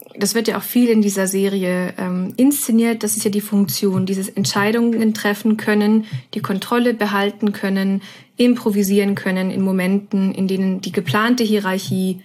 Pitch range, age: 195-230 Hz, 20-39